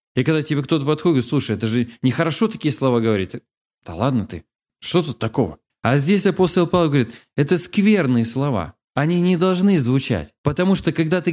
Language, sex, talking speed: Russian, male, 185 wpm